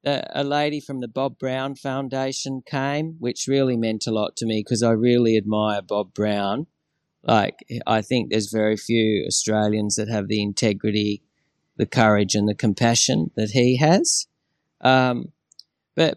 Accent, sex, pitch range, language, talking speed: Australian, male, 110-140 Hz, English, 155 wpm